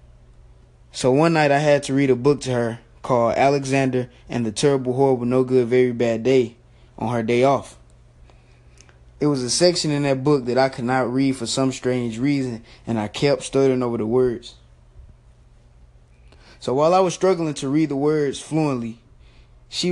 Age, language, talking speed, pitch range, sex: 20-39, English, 180 wpm, 115-140 Hz, male